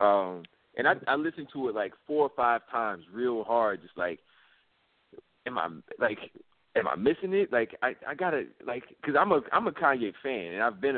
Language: English